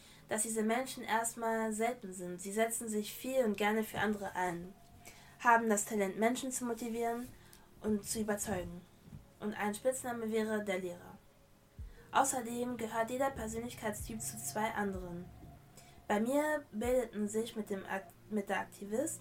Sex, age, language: female, 20-39, German